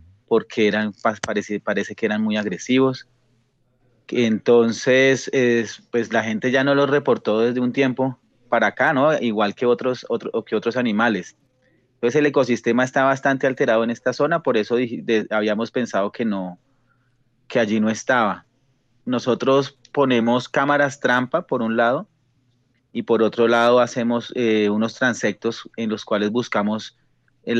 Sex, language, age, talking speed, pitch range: male, Spanish, 30-49, 155 wpm, 110-125 Hz